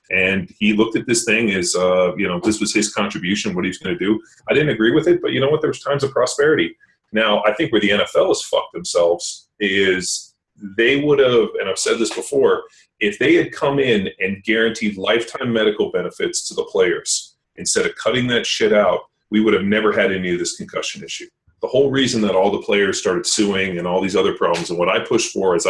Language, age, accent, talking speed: English, 30-49, American, 235 wpm